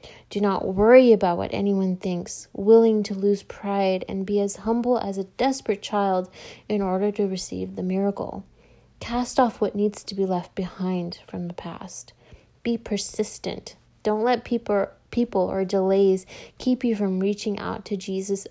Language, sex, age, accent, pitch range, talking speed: English, female, 30-49, American, 190-215 Hz, 165 wpm